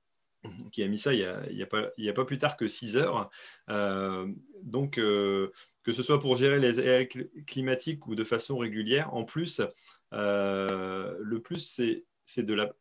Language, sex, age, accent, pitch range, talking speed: French, male, 30-49, French, 110-145 Hz, 185 wpm